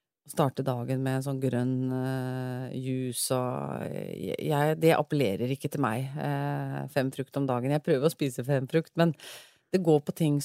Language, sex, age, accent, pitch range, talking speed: English, female, 30-49, Swedish, 140-170 Hz, 170 wpm